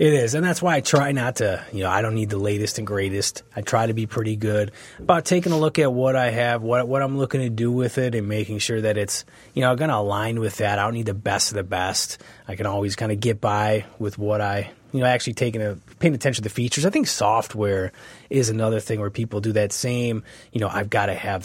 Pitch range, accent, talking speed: 105-135 Hz, American, 270 wpm